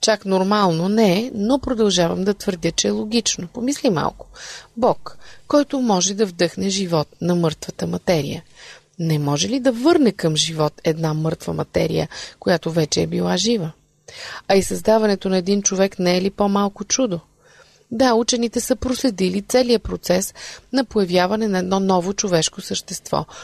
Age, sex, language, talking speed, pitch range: 30-49, female, Bulgarian, 155 wpm, 175-235 Hz